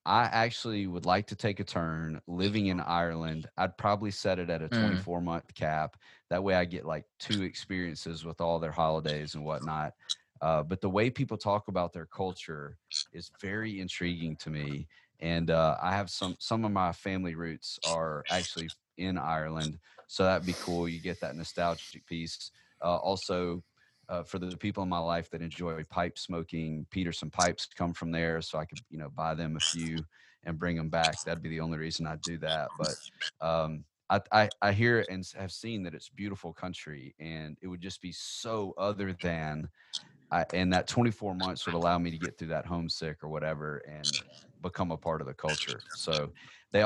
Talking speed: 195 wpm